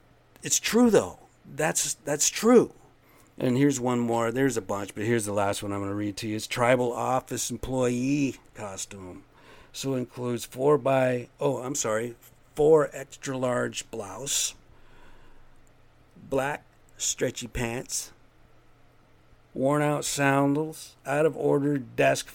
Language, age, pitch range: English, 50-69, 110-130 Hz